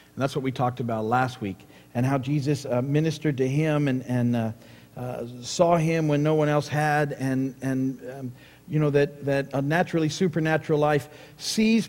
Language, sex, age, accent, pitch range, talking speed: English, male, 50-69, American, 125-155 Hz, 190 wpm